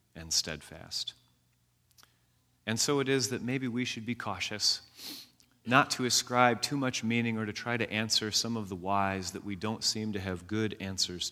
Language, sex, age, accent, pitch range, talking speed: English, male, 40-59, American, 95-125 Hz, 185 wpm